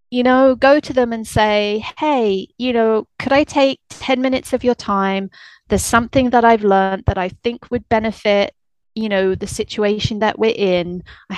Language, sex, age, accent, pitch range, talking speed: English, female, 30-49, British, 185-240 Hz, 190 wpm